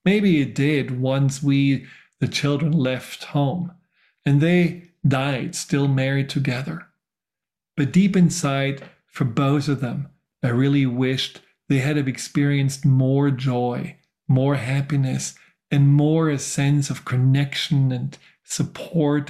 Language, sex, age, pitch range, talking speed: English, male, 40-59, 130-145 Hz, 125 wpm